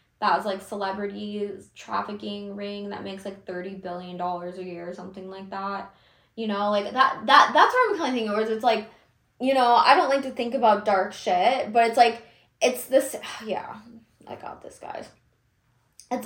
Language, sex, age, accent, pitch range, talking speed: English, female, 20-39, American, 200-250 Hz, 195 wpm